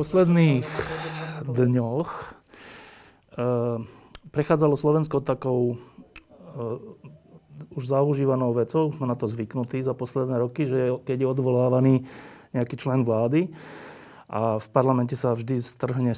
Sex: male